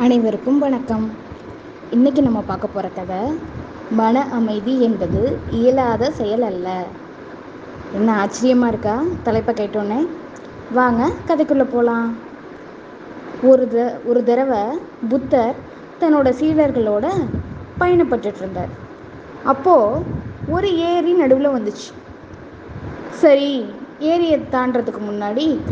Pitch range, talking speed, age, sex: 230-310 Hz, 90 wpm, 20-39, female